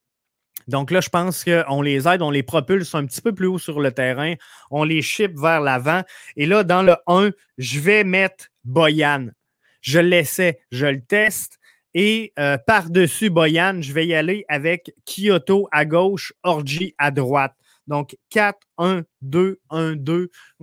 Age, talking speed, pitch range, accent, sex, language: 20-39, 155 wpm, 145-185 Hz, Canadian, male, French